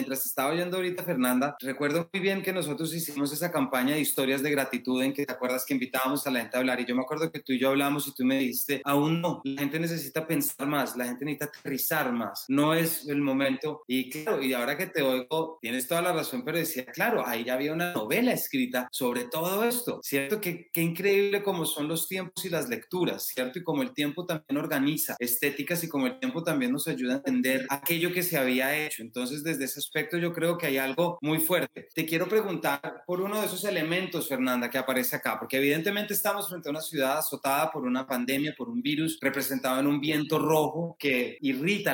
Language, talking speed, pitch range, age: Spanish, 225 wpm, 135-175 Hz, 30-49